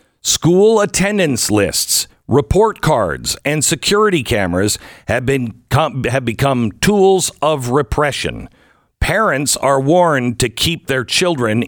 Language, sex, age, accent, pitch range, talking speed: English, male, 50-69, American, 115-160 Hz, 115 wpm